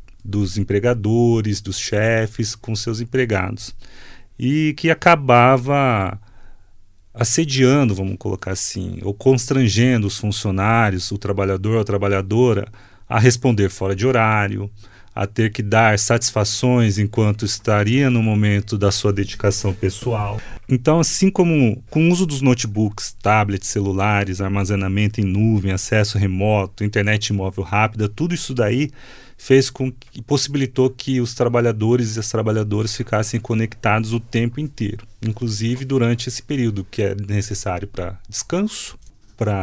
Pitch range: 100-125 Hz